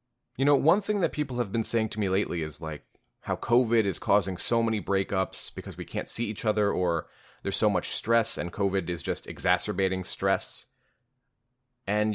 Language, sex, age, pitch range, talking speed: English, male, 30-49, 95-125 Hz, 195 wpm